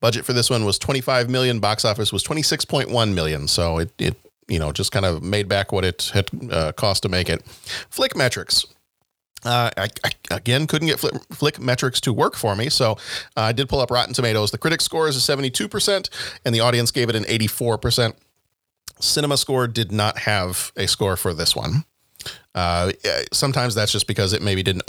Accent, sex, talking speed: American, male, 220 wpm